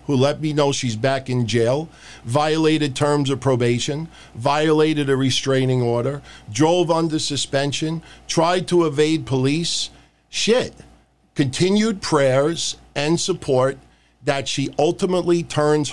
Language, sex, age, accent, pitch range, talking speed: English, male, 50-69, American, 135-175 Hz, 120 wpm